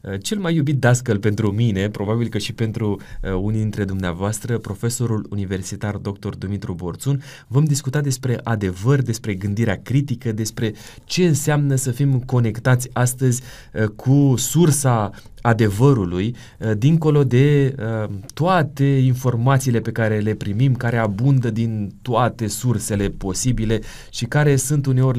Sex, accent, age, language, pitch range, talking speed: male, native, 20-39, Romanian, 110-140 Hz, 125 wpm